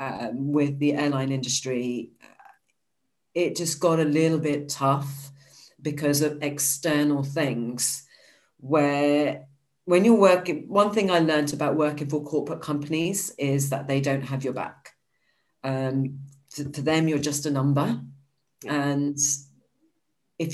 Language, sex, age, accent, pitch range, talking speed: English, female, 40-59, British, 140-155 Hz, 135 wpm